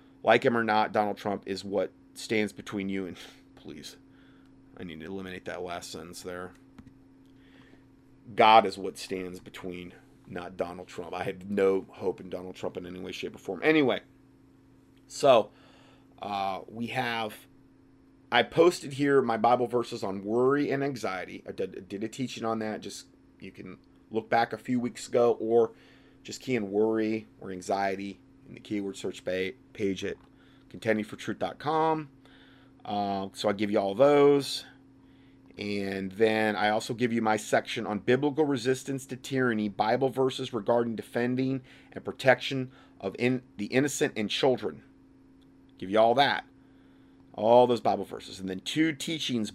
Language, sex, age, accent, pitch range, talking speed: English, male, 30-49, American, 100-130 Hz, 155 wpm